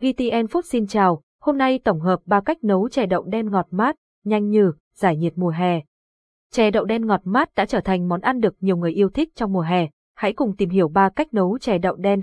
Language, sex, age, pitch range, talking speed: Vietnamese, female, 20-39, 185-230 Hz, 245 wpm